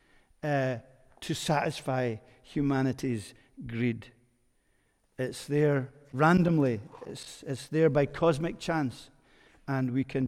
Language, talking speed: English, 100 wpm